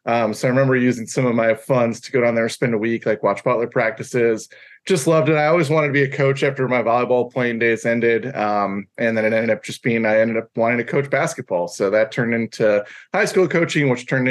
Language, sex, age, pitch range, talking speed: English, male, 20-39, 115-140 Hz, 255 wpm